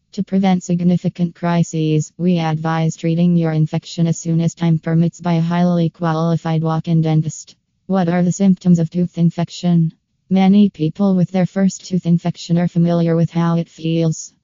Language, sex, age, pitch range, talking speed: English, female, 20-39, 165-175 Hz, 165 wpm